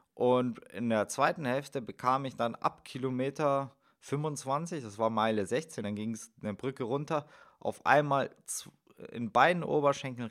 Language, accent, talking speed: German, German, 150 wpm